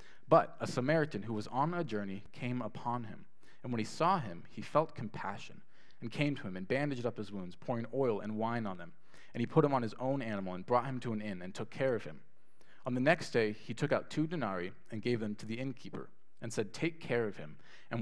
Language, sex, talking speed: English, male, 250 wpm